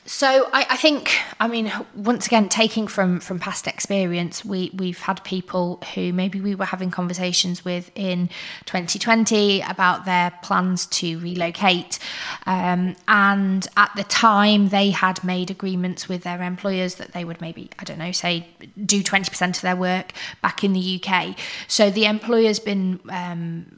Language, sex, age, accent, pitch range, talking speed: English, female, 20-39, British, 180-215 Hz, 165 wpm